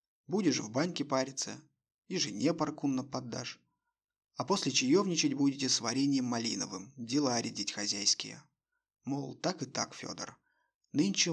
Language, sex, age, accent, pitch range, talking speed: Russian, male, 30-49, native, 125-160 Hz, 125 wpm